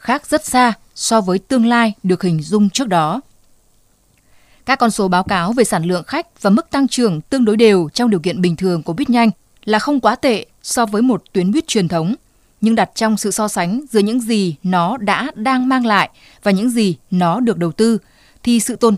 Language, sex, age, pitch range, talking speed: Vietnamese, female, 20-39, 185-235 Hz, 225 wpm